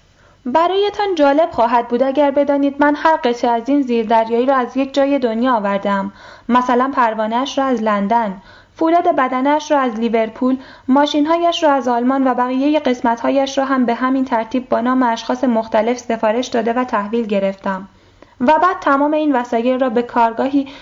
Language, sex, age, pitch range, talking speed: Persian, female, 10-29, 235-290 Hz, 180 wpm